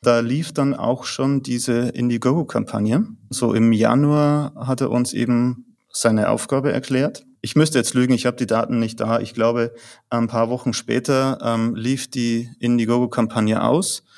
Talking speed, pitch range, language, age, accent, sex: 160 wpm, 115-135 Hz, German, 30-49, German, male